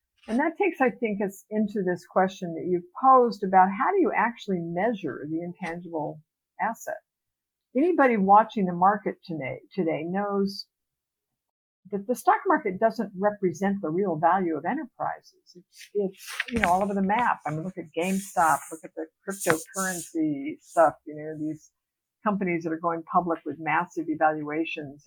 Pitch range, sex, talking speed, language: 165-220 Hz, female, 165 wpm, English